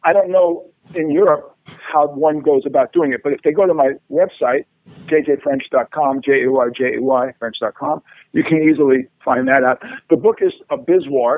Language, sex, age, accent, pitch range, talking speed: English, male, 50-69, American, 135-170 Hz, 170 wpm